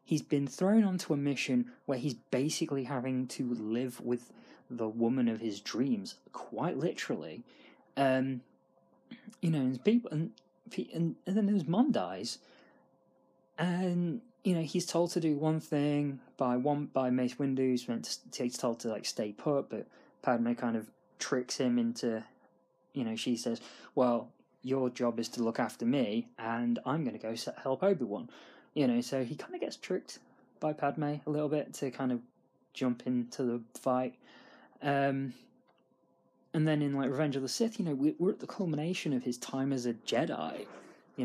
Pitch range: 120-155 Hz